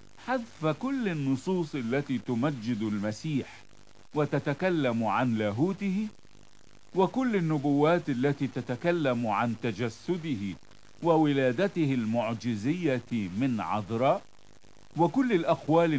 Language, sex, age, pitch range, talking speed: Italian, male, 50-69, 115-170 Hz, 80 wpm